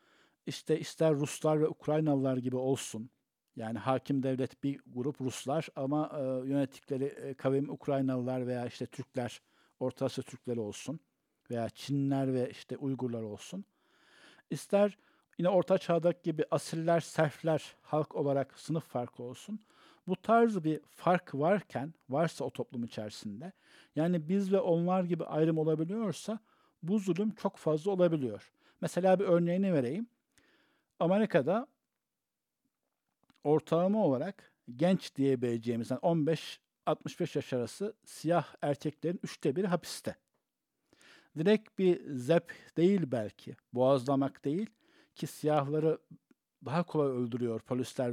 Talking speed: 115 wpm